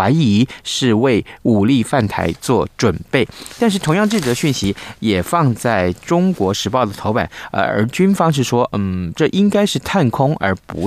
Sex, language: male, Chinese